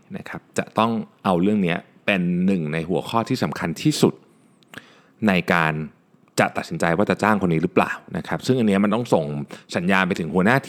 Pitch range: 90-140 Hz